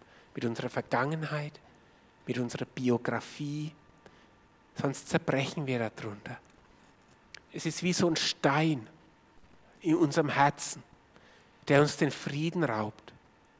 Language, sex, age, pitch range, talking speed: German, male, 50-69, 135-165 Hz, 105 wpm